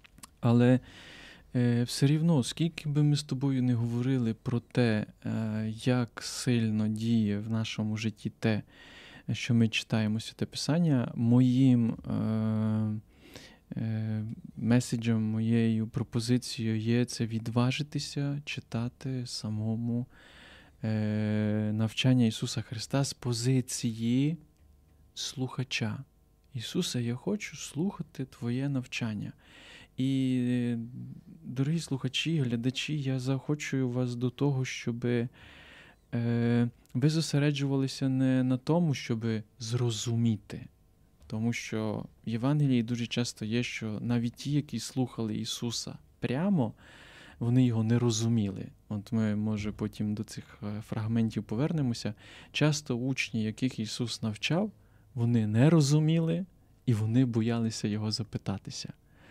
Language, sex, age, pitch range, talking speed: Ukrainian, male, 20-39, 110-130 Hz, 105 wpm